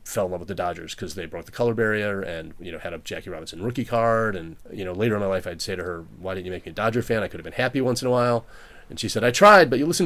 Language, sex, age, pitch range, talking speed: English, male, 30-49, 90-120 Hz, 340 wpm